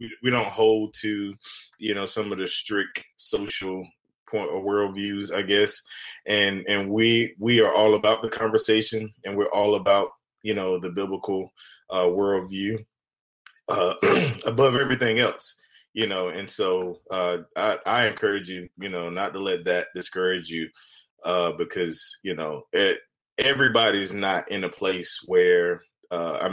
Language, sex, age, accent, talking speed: English, male, 20-39, American, 155 wpm